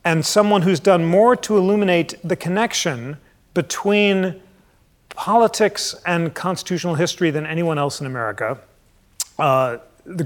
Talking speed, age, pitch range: 125 wpm, 40-59, 160-200 Hz